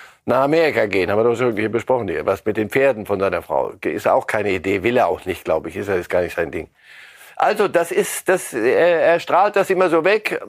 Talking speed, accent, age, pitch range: 245 wpm, German, 60-79, 135-175 Hz